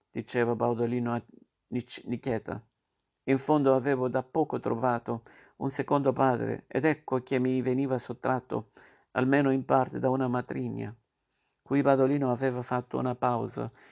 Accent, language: native, Italian